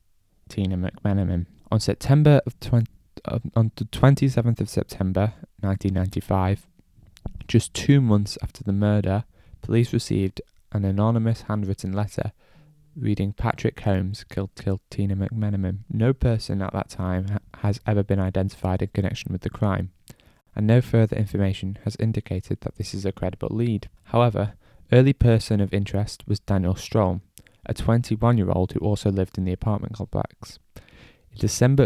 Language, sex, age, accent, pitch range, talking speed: English, male, 10-29, British, 95-110 Hz, 145 wpm